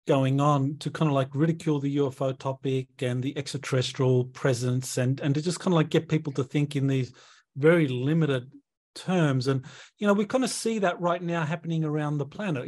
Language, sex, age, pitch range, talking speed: English, male, 40-59, 135-160 Hz, 210 wpm